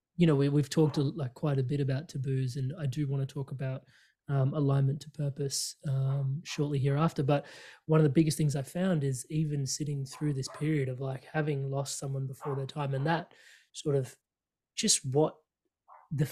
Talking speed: 200 wpm